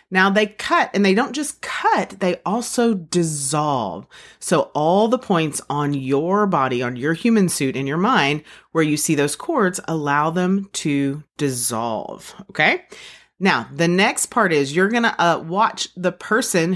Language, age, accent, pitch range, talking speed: English, 30-49, American, 145-210 Hz, 165 wpm